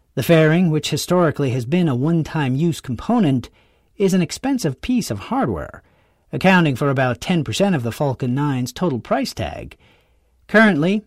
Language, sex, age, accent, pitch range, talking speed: English, male, 50-69, American, 125-180 Hz, 145 wpm